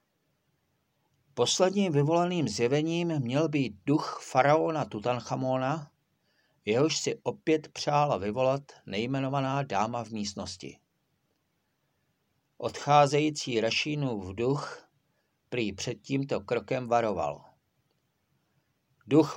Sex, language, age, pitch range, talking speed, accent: male, Czech, 50-69, 110-145 Hz, 85 wpm, native